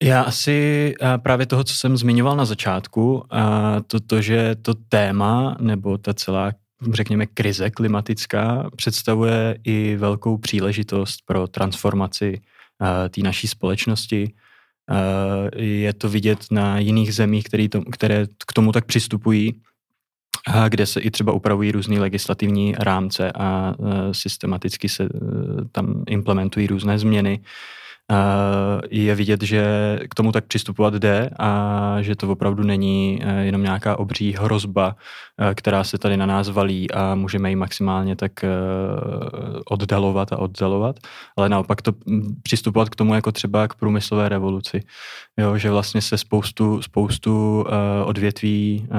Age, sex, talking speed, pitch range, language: 20-39, male, 125 wpm, 100-110 Hz, Czech